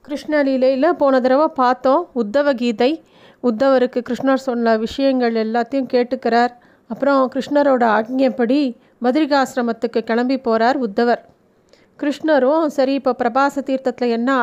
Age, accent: 30-49, native